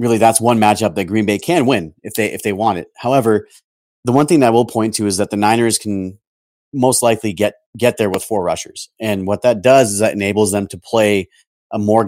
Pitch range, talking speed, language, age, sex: 100-115 Hz, 235 wpm, English, 30-49, male